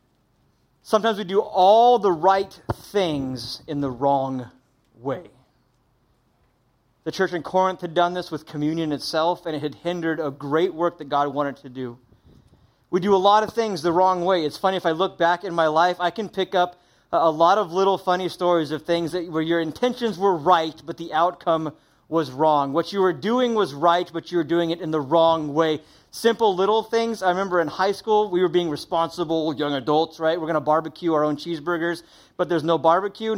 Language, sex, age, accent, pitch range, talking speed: English, male, 30-49, American, 150-180 Hz, 205 wpm